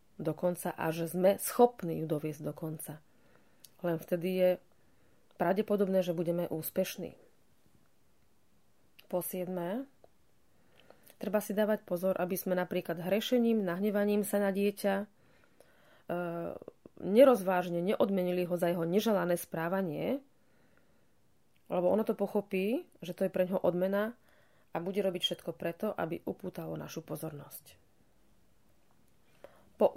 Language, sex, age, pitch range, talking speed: Slovak, female, 30-49, 165-205 Hz, 115 wpm